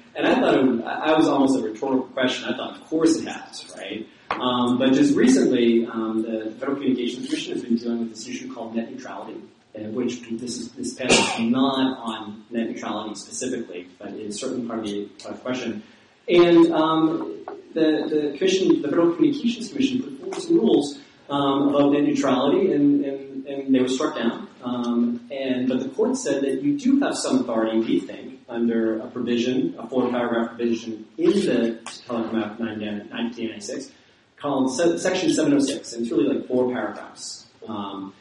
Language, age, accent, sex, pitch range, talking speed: English, 30-49, American, male, 115-180 Hz, 180 wpm